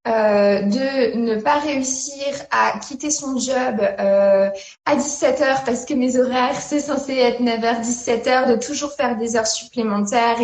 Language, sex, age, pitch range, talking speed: French, female, 20-39, 230-290 Hz, 170 wpm